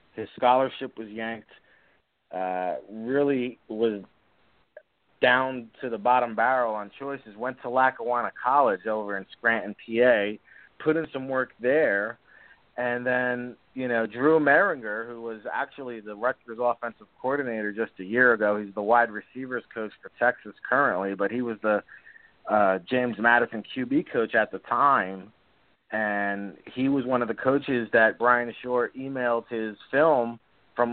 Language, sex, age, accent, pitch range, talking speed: English, male, 30-49, American, 110-130 Hz, 150 wpm